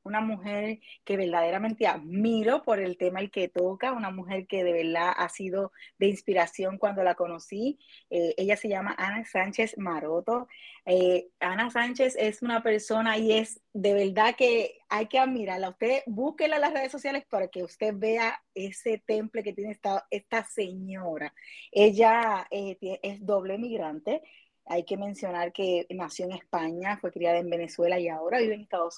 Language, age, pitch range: Spanish, 20-39, 180-225 Hz